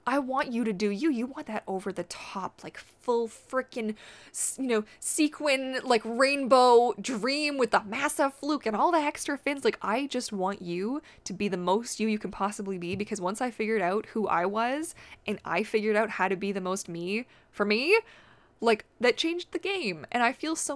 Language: English